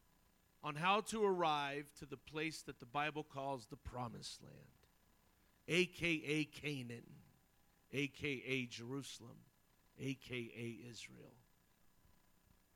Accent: American